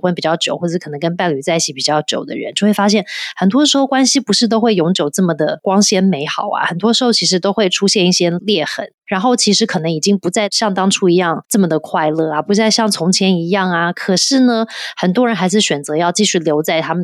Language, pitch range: Chinese, 170-220 Hz